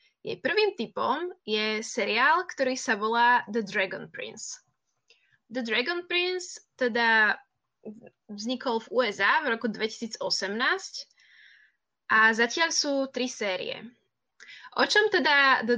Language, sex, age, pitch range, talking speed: Slovak, female, 20-39, 220-285 Hz, 115 wpm